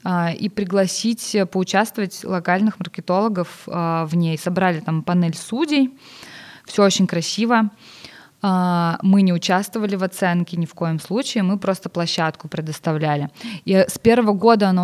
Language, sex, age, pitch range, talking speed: Russian, female, 20-39, 170-215 Hz, 130 wpm